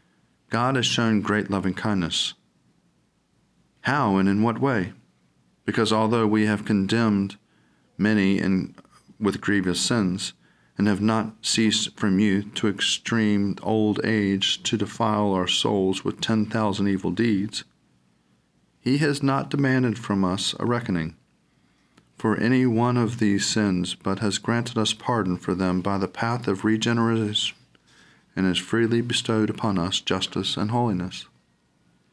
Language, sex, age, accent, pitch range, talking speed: English, male, 40-59, American, 95-115 Hz, 135 wpm